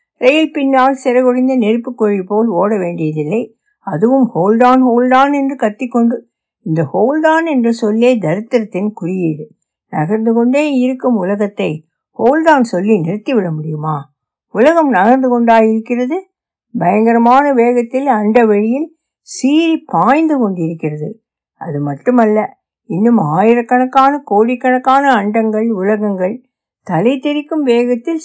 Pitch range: 185-260 Hz